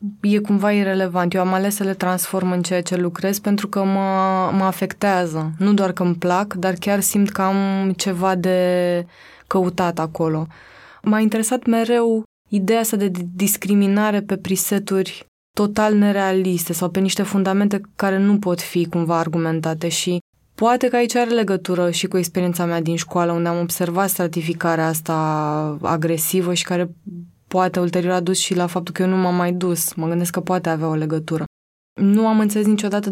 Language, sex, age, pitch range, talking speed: Romanian, female, 20-39, 175-195 Hz, 175 wpm